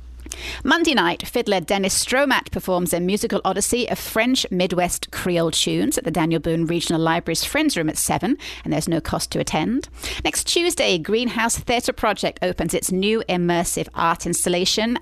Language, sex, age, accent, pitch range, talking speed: English, female, 30-49, British, 170-235 Hz, 165 wpm